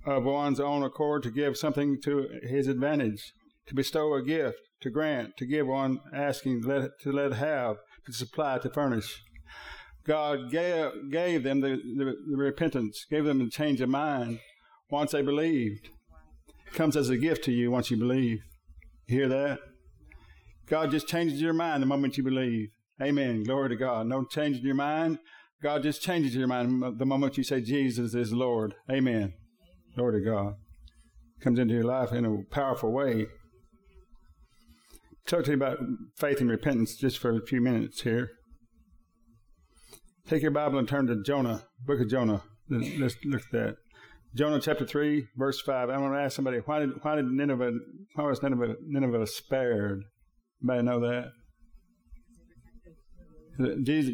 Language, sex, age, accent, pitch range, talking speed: English, male, 60-79, American, 115-145 Hz, 170 wpm